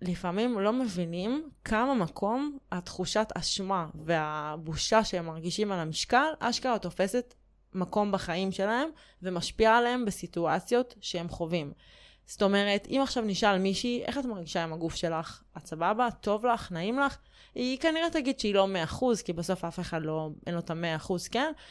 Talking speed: 150 wpm